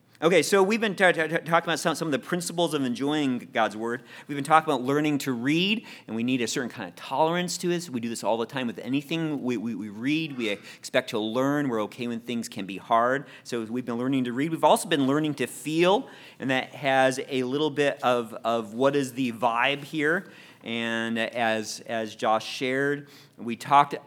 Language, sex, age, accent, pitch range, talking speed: English, male, 40-59, American, 120-160 Hz, 225 wpm